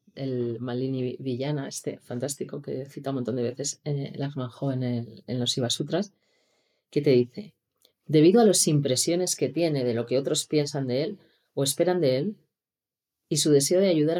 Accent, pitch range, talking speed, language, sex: Spanish, 125-160 Hz, 175 wpm, Spanish, female